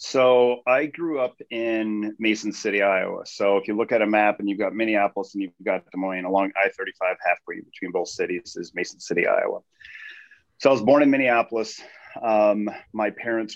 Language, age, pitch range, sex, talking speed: English, 30-49, 95-110 Hz, male, 190 wpm